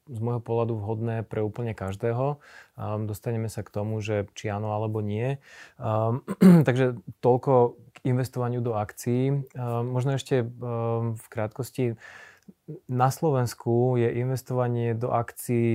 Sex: male